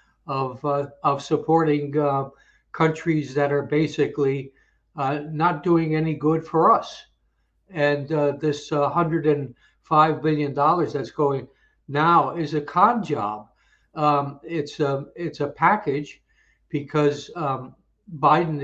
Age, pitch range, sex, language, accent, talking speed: 60-79, 145-165 Hz, male, English, American, 130 wpm